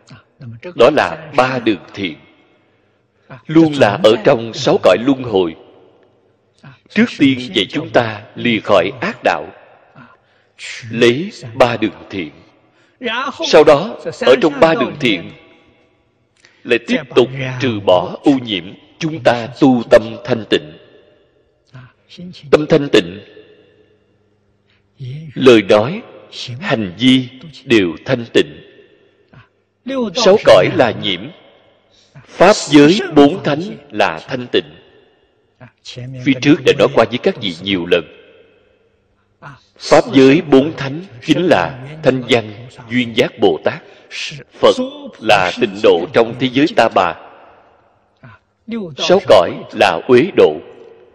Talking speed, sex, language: 120 wpm, male, Vietnamese